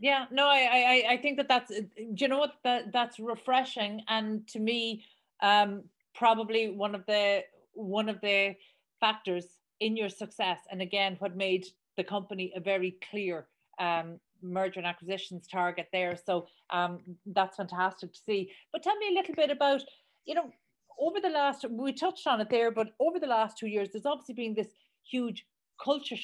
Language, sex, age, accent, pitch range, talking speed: English, female, 40-59, Irish, 190-245 Hz, 185 wpm